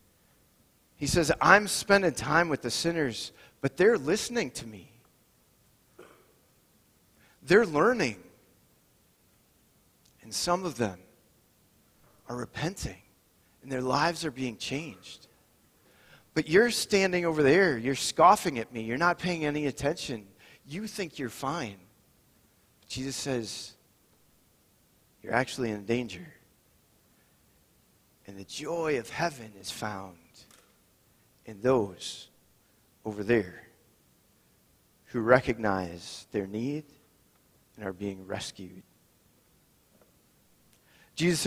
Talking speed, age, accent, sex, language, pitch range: 105 wpm, 40-59, American, male, English, 105-150 Hz